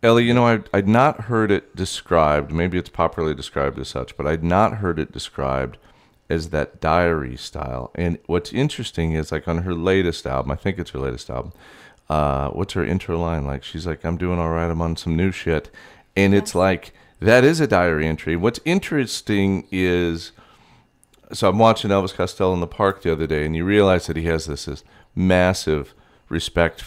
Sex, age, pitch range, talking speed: male, 40-59, 75-95 Hz, 200 wpm